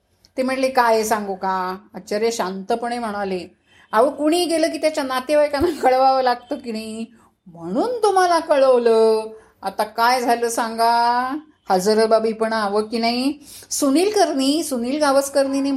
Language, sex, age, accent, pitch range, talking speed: Marathi, female, 30-49, native, 220-275 Hz, 135 wpm